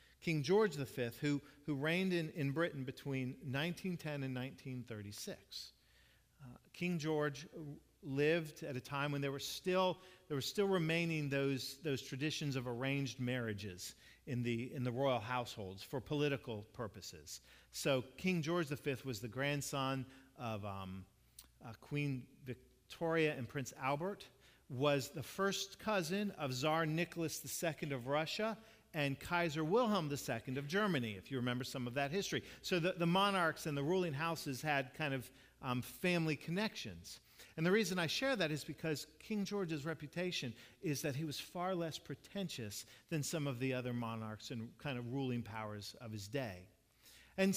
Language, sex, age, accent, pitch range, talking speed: English, male, 40-59, American, 125-165 Hz, 165 wpm